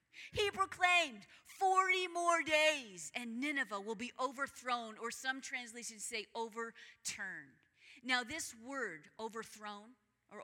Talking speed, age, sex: 115 wpm, 30-49, female